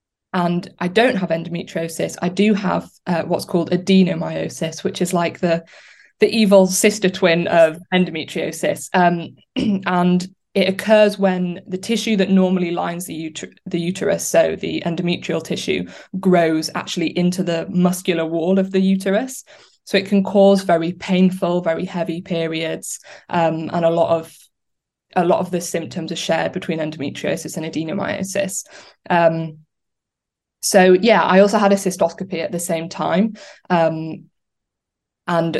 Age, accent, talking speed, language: 20-39, British, 150 wpm, English